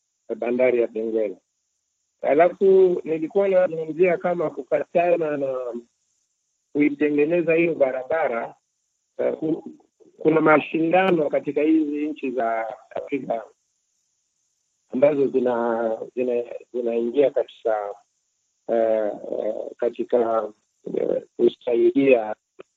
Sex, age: male, 50-69